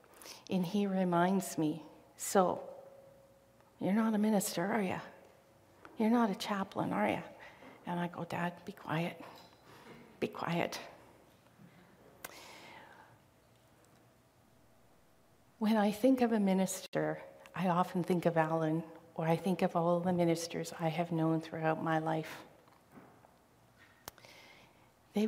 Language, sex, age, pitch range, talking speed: English, female, 50-69, 165-210 Hz, 120 wpm